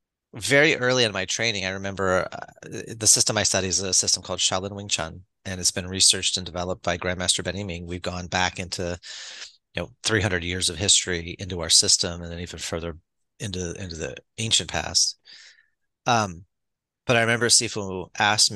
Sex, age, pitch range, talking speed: male, 30-49, 90-115 Hz, 190 wpm